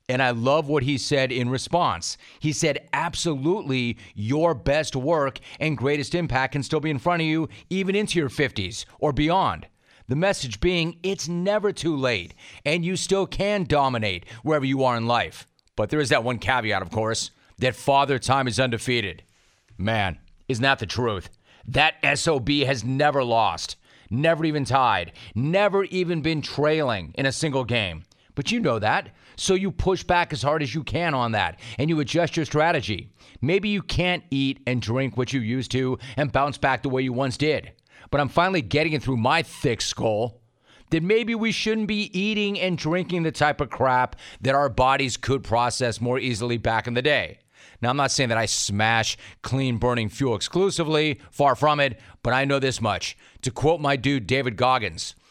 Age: 40-59